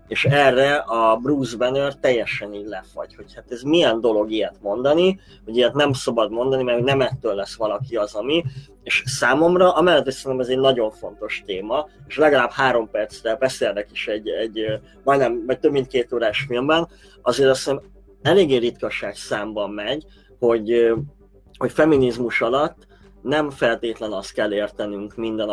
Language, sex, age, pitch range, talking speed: Hungarian, male, 20-39, 115-140 Hz, 160 wpm